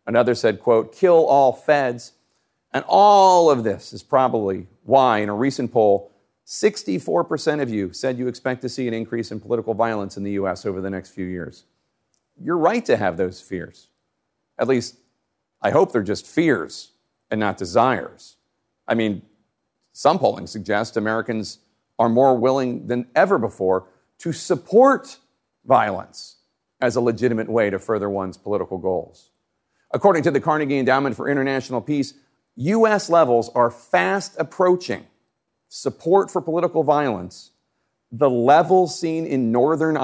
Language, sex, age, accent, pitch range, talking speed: English, male, 40-59, American, 110-155 Hz, 150 wpm